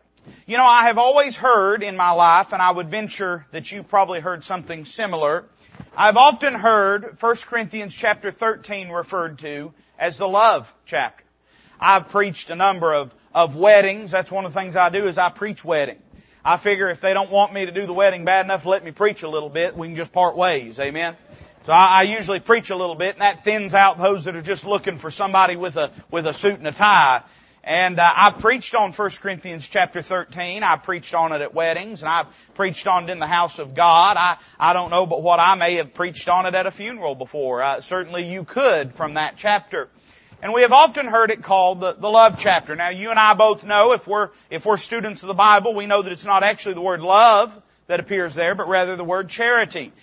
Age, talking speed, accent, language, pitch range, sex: 40-59, 230 wpm, American, English, 175-210 Hz, male